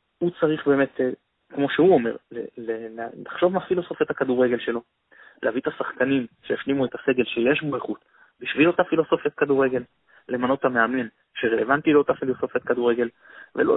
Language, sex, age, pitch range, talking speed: Hebrew, male, 20-39, 125-185 Hz, 135 wpm